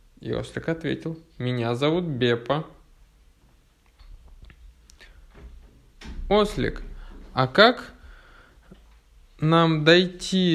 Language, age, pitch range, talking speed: Russian, 20-39, 105-165 Hz, 65 wpm